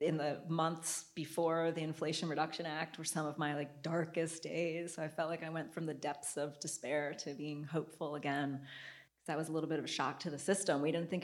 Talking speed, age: 235 wpm, 30-49